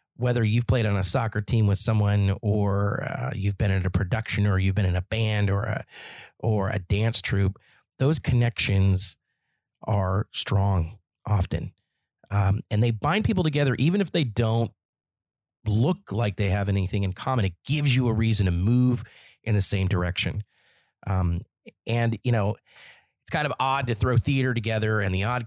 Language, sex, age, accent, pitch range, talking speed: English, male, 30-49, American, 95-115 Hz, 180 wpm